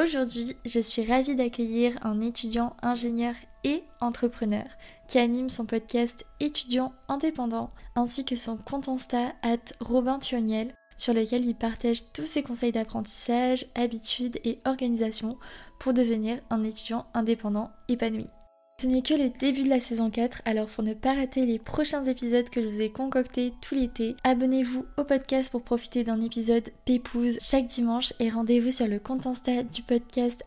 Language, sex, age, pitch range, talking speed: French, female, 20-39, 230-255 Hz, 165 wpm